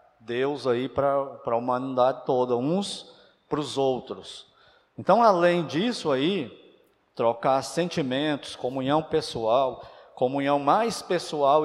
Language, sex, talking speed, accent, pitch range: Portuguese, male, 110 wpm, Brazilian, 140-180 Hz